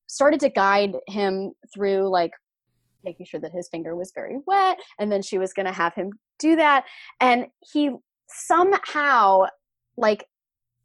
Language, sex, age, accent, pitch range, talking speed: English, female, 20-39, American, 190-275 Hz, 155 wpm